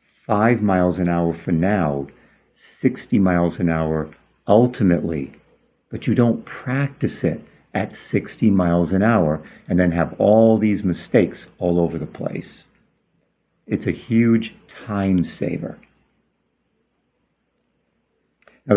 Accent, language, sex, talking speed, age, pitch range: American, English, male, 120 wpm, 50-69, 90-130 Hz